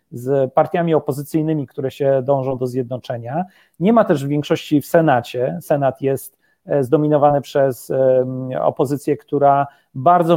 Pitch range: 140-170 Hz